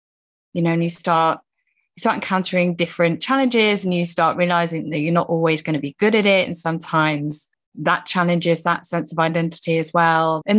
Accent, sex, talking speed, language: British, female, 200 wpm, English